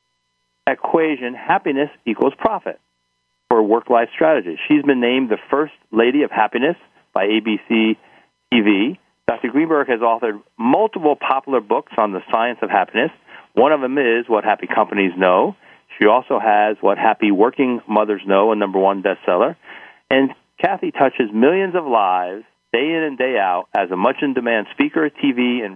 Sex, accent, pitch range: male, American, 105-130 Hz